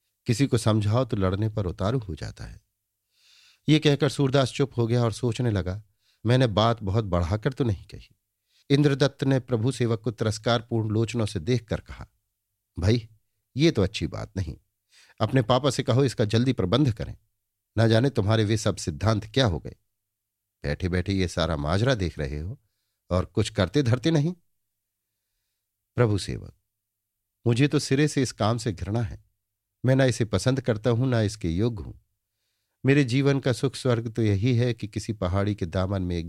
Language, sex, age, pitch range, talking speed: Hindi, male, 50-69, 100-120 Hz, 180 wpm